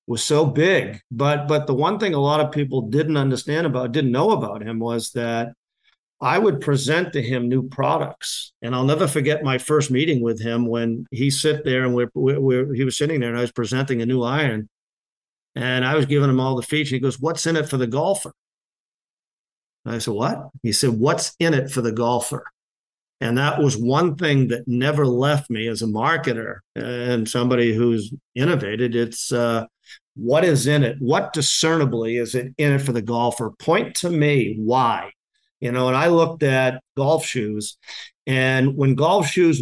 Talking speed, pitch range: 195 wpm, 120-150 Hz